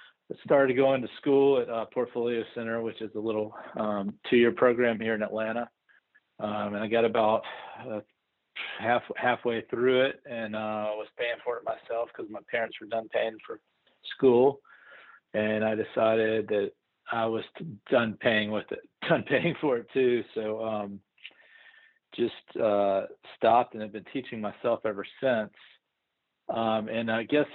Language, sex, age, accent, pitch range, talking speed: English, male, 40-59, American, 105-120 Hz, 160 wpm